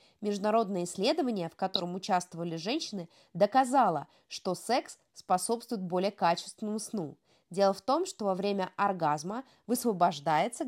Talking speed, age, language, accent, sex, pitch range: 120 wpm, 20-39, Russian, native, female, 185-245 Hz